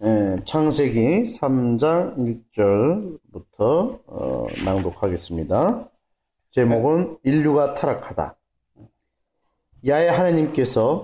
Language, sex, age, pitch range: Korean, male, 40-59, 110-150 Hz